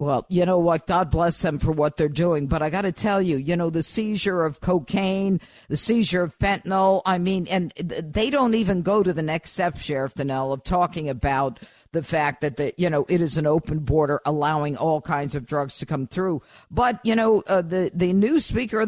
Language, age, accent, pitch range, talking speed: English, 50-69, American, 155-195 Hz, 225 wpm